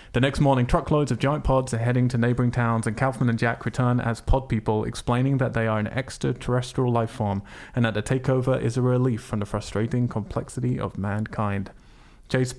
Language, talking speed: English, 200 wpm